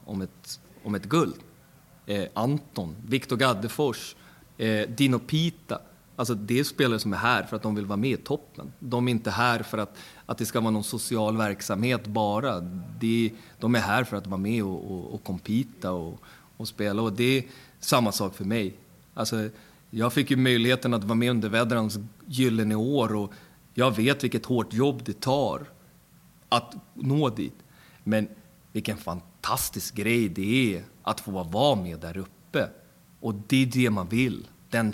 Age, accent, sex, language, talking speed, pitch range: 30-49, native, male, Swedish, 180 wpm, 105-130 Hz